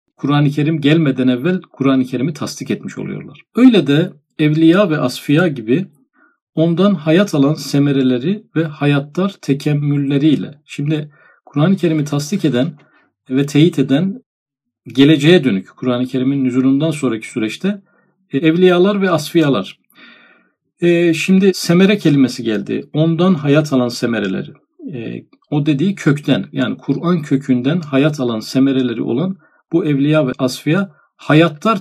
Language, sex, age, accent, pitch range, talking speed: Turkish, male, 50-69, native, 135-170 Hz, 120 wpm